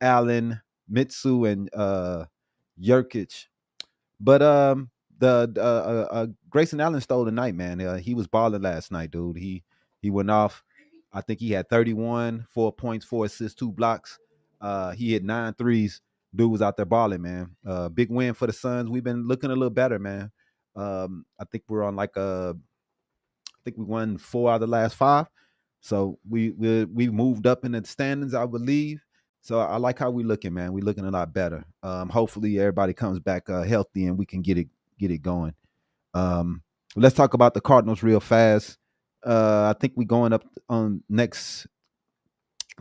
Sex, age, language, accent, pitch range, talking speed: male, 30-49, English, American, 100-120 Hz, 190 wpm